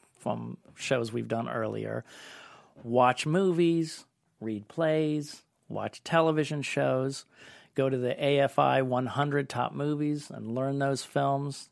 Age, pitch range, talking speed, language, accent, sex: 40-59, 115-145 Hz, 120 wpm, English, American, male